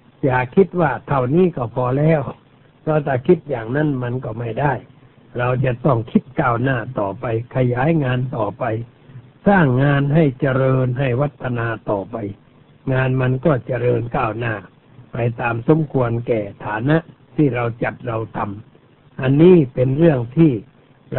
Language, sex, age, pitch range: Thai, male, 60-79, 120-145 Hz